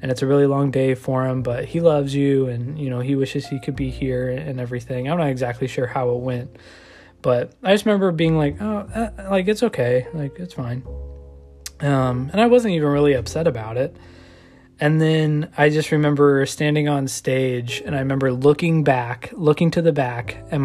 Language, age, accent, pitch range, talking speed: English, 20-39, American, 125-145 Hz, 205 wpm